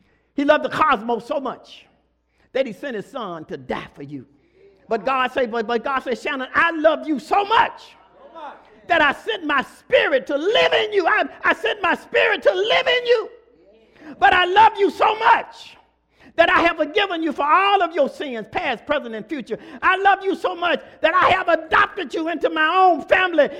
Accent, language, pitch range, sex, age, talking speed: American, English, 265-370 Hz, male, 50-69, 195 wpm